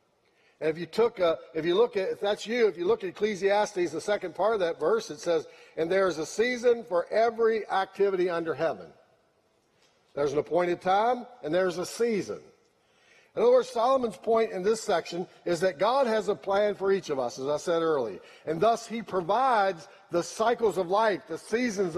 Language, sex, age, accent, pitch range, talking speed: English, male, 50-69, American, 180-240 Hz, 200 wpm